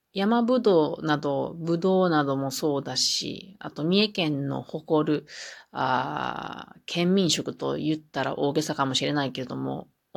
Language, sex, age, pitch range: Japanese, female, 40-59, 145-195 Hz